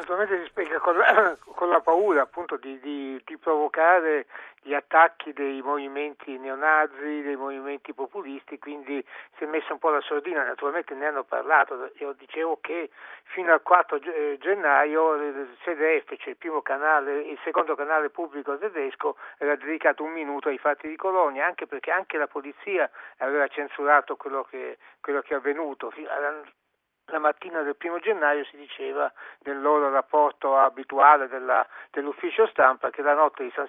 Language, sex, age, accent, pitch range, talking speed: Italian, male, 60-79, native, 140-165 Hz, 160 wpm